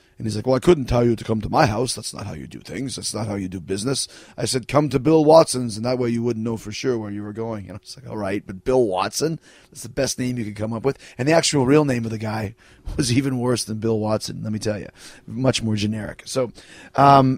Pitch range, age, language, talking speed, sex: 105-130 Hz, 30-49, English, 290 wpm, male